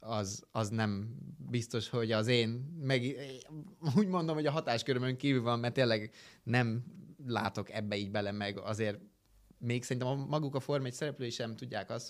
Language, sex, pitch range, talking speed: Hungarian, male, 105-130 Hz, 165 wpm